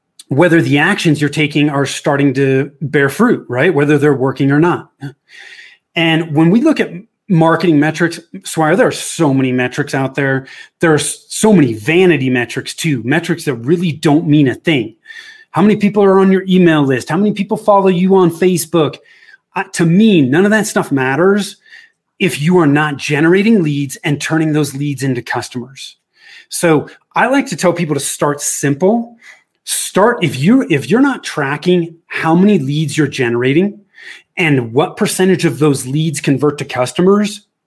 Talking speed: 175 wpm